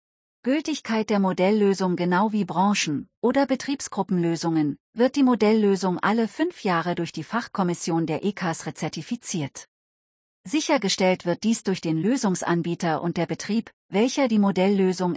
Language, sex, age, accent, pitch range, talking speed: German, female, 40-59, German, 165-215 Hz, 125 wpm